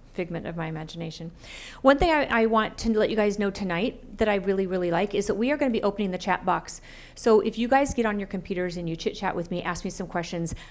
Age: 40-59